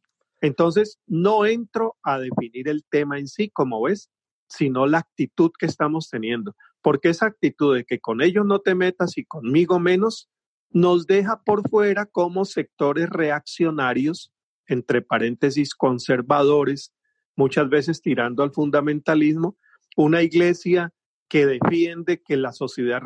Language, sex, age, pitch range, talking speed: Spanish, male, 40-59, 135-180 Hz, 135 wpm